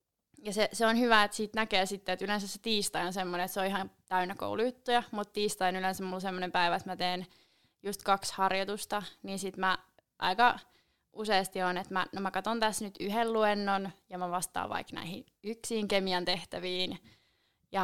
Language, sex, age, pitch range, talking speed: Finnish, female, 20-39, 185-205 Hz, 200 wpm